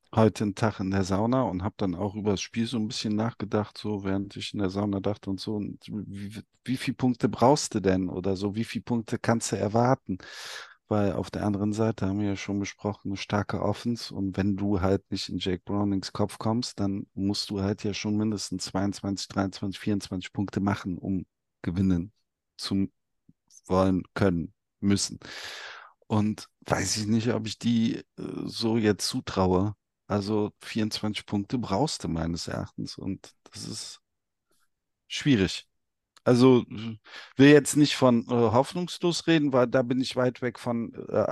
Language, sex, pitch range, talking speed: German, male, 100-125 Hz, 175 wpm